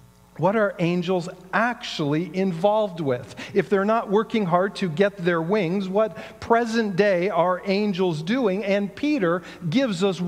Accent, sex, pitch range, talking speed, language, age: American, male, 185-245 Hz, 145 wpm, English, 40-59